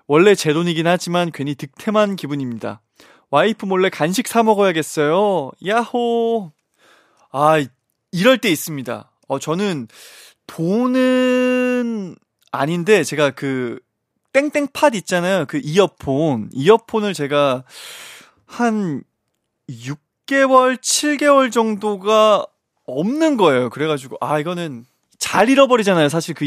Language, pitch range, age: Korean, 145-220 Hz, 20-39